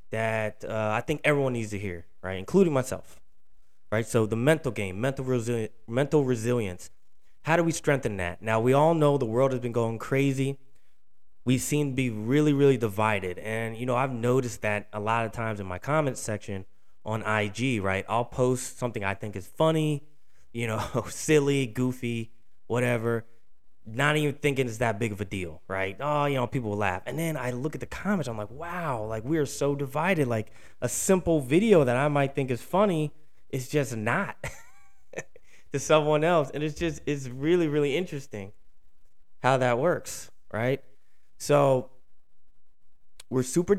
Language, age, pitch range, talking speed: English, 20-39, 105-140 Hz, 180 wpm